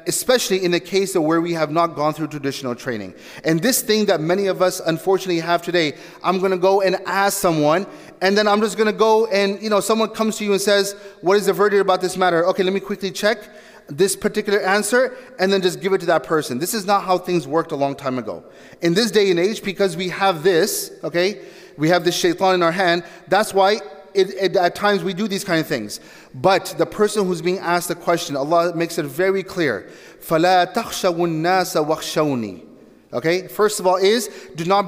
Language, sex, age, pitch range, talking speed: English, male, 30-49, 165-200 Hz, 215 wpm